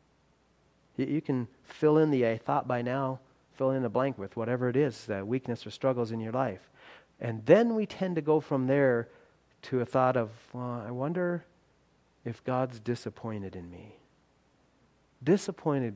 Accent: American